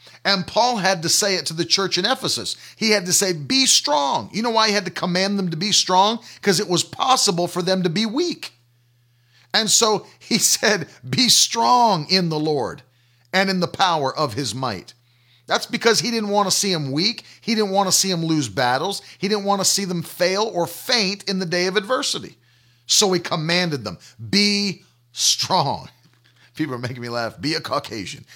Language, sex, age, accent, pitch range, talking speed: English, male, 40-59, American, 125-205 Hz, 205 wpm